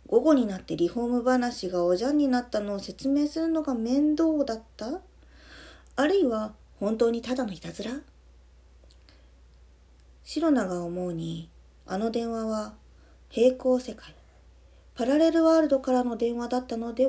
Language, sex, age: Japanese, female, 40-59